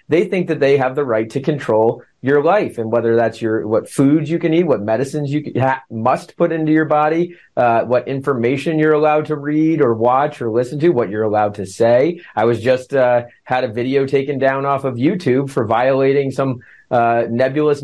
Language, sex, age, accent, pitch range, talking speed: English, male, 30-49, American, 115-145 Hz, 210 wpm